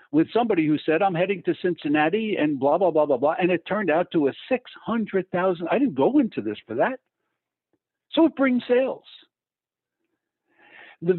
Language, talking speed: English, 175 wpm